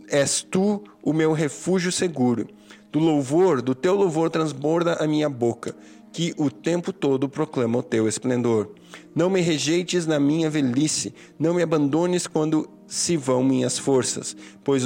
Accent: Brazilian